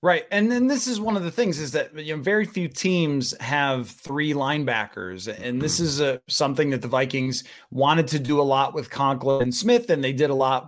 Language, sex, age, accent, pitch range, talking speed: English, male, 30-49, American, 145-195 Hz, 230 wpm